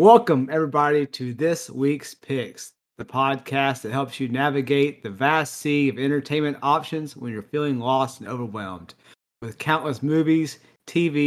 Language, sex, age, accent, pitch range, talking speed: English, male, 30-49, American, 130-155 Hz, 150 wpm